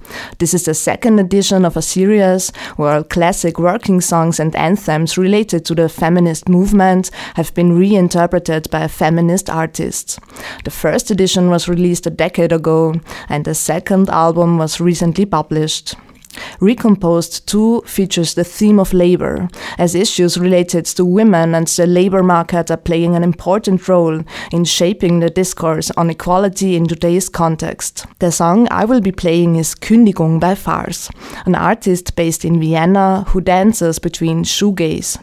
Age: 20-39